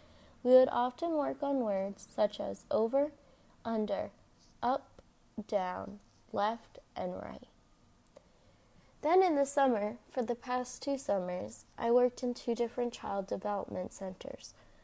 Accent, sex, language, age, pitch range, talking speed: American, female, English, 20-39, 200-255 Hz, 130 wpm